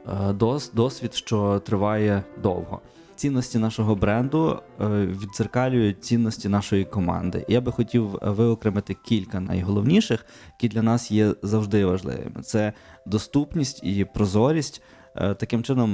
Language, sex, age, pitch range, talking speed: Ukrainian, male, 20-39, 95-115 Hz, 110 wpm